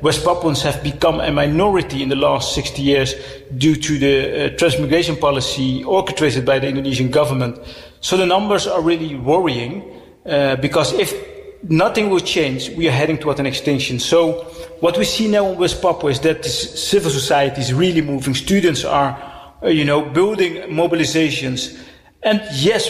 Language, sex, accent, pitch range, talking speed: English, male, Dutch, 140-180 Hz, 170 wpm